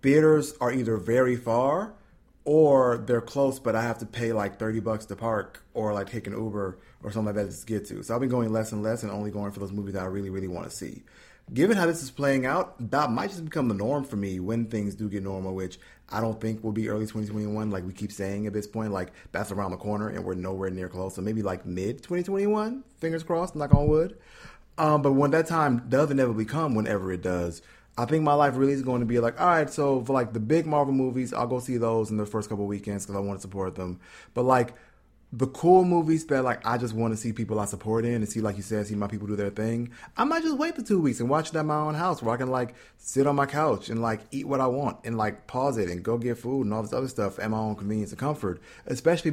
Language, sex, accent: English, male, American